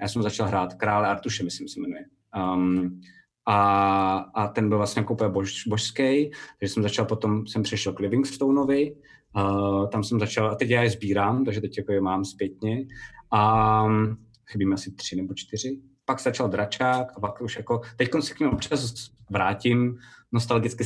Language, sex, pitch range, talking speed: Czech, male, 100-115 Hz, 180 wpm